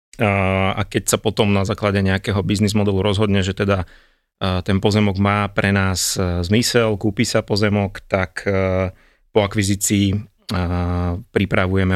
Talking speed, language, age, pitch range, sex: 125 wpm, Slovak, 30-49, 95-110 Hz, male